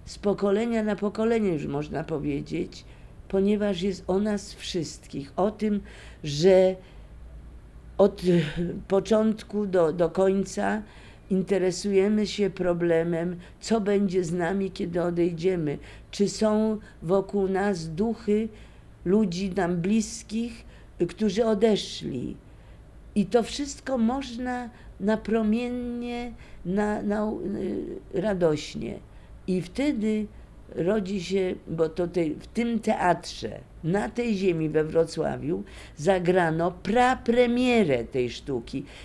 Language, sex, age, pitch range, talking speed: Polish, female, 50-69, 170-220 Hz, 100 wpm